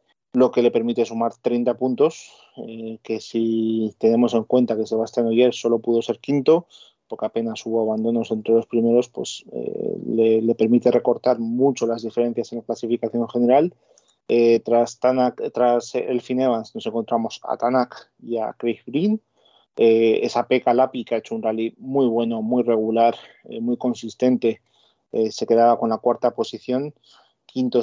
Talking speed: 165 wpm